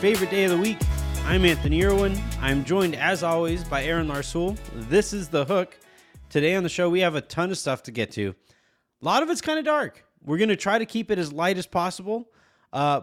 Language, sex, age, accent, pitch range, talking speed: English, male, 30-49, American, 125-180 Hz, 235 wpm